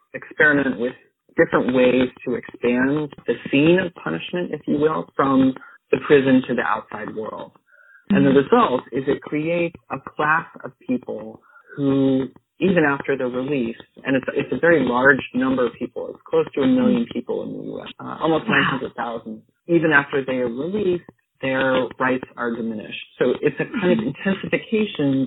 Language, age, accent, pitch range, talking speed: English, 30-49, American, 120-165 Hz, 170 wpm